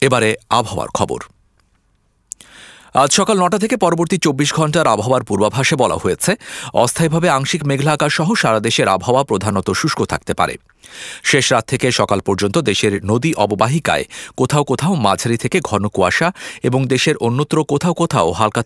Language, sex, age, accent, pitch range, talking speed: English, male, 50-69, Indian, 105-160 Hz, 145 wpm